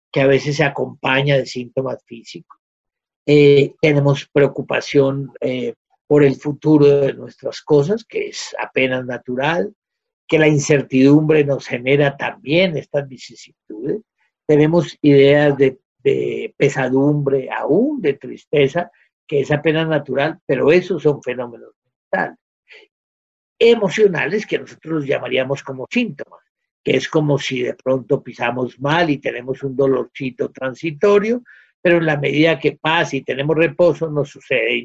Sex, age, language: male, 50-69, Spanish